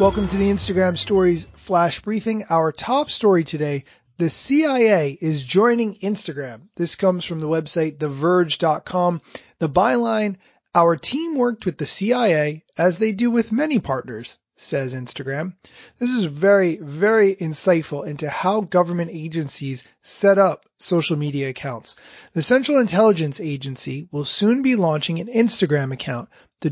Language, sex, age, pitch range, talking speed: English, male, 30-49, 150-205 Hz, 145 wpm